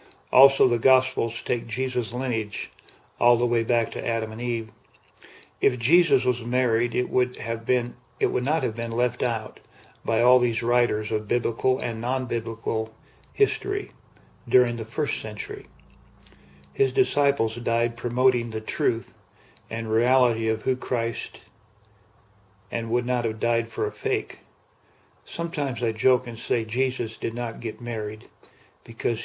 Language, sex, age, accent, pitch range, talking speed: English, male, 50-69, American, 115-130 Hz, 150 wpm